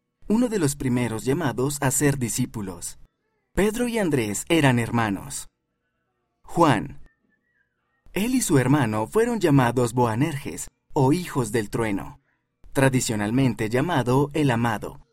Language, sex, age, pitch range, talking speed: Spanish, male, 30-49, 120-150 Hz, 115 wpm